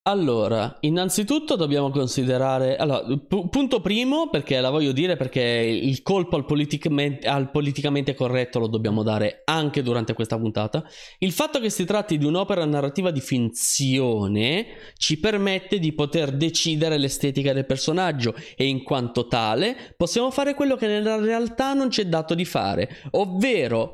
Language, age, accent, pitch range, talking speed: Italian, 20-39, native, 130-200 Hz, 145 wpm